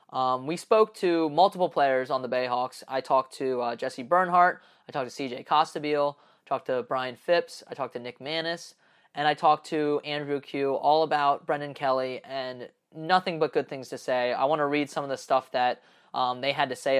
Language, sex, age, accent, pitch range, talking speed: English, male, 20-39, American, 125-150 Hz, 215 wpm